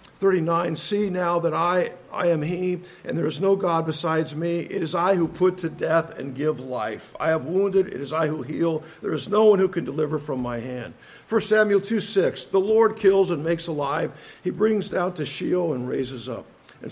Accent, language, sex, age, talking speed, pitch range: American, English, male, 50-69, 225 wpm, 160-205 Hz